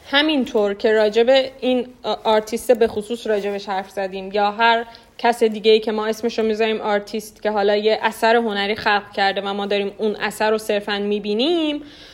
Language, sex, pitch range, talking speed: Persian, female, 215-265 Hz, 180 wpm